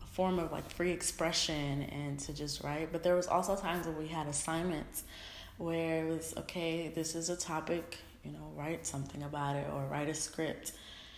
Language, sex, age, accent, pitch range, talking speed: English, female, 20-39, American, 150-180 Hz, 195 wpm